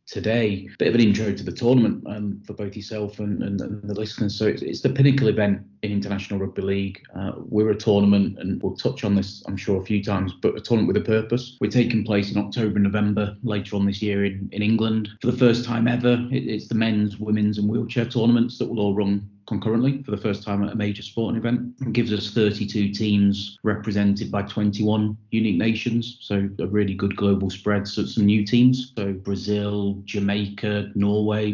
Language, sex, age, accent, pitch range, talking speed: English, male, 30-49, British, 100-115 Hz, 215 wpm